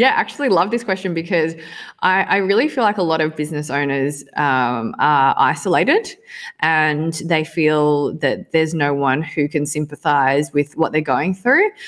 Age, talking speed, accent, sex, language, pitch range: 20-39, 175 wpm, Australian, female, English, 145-175 Hz